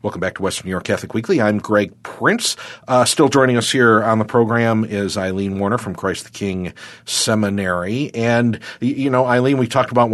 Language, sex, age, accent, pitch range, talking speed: English, male, 50-69, American, 105-125 Hz, 200 wpm